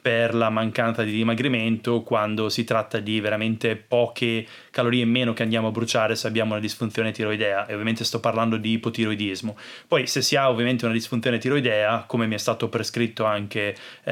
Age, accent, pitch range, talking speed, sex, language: 20-39, native, 110-125 Hz, 185 wpm, male, Italian